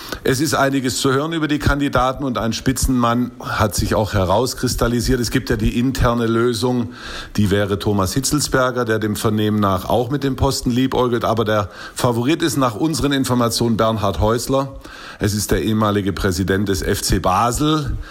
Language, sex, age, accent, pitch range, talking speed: German, male, 50-69, German, 100-125 Hz, 170 wpm